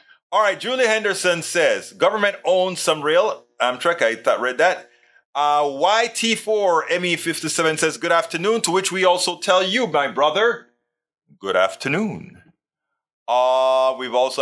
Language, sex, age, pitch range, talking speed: English, male, 30-49, 140-210 Hz, 135 wpm